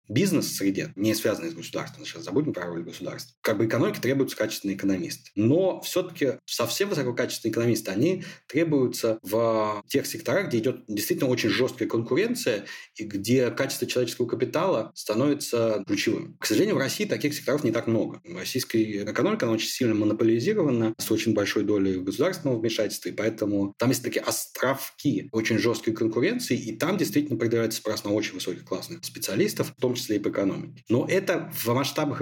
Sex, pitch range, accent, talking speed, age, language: male, 110-140 Hz, native, 165 wpm, 30-49, Russian